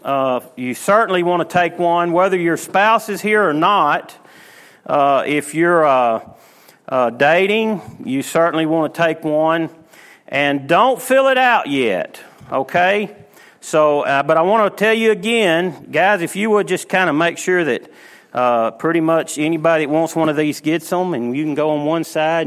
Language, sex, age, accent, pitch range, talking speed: English, male, 40-59, American, 140-185 Hz, 185 wpm